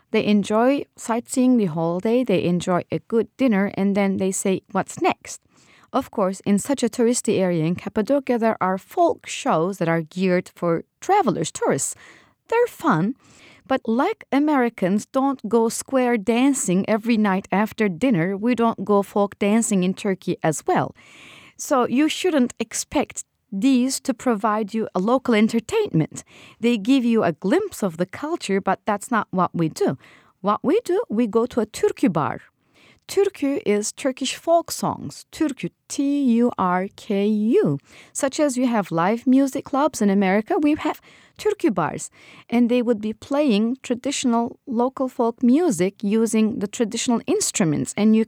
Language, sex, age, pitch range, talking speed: English, female, 30-49, 200-265 Hz, 160 wpm